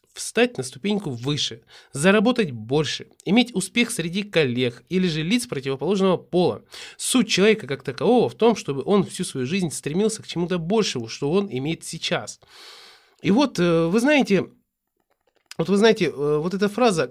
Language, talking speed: Russian, 145 wpm